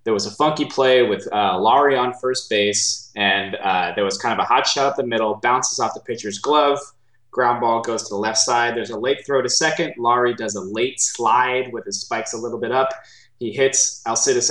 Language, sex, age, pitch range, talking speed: English, male, 20-39, 105-125 Hz, 230 wpm